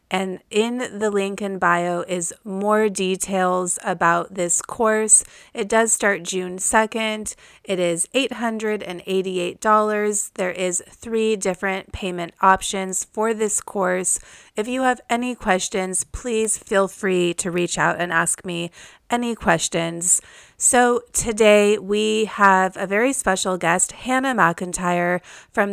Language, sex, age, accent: English, female, 30-49, American